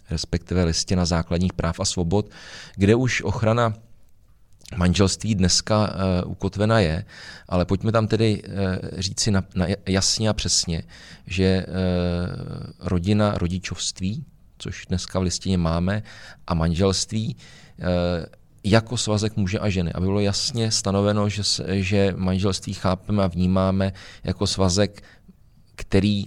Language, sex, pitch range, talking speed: Czech, male, 90-105 Hz, 110 wpm